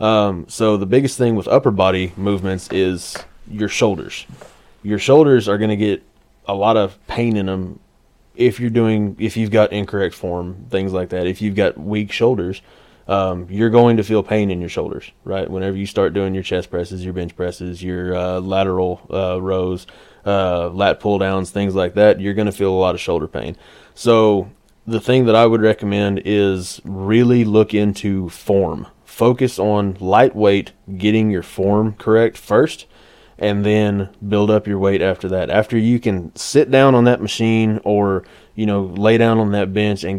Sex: male